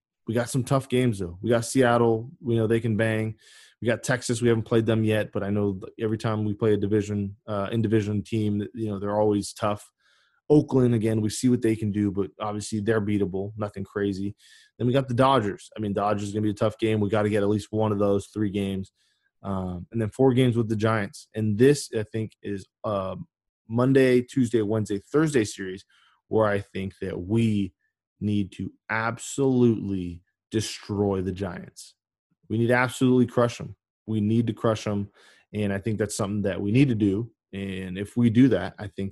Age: 20-39